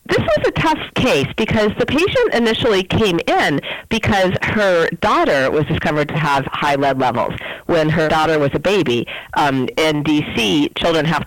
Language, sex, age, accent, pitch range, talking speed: English, female, 40-59, American, 140-175 Hz, 170 wpm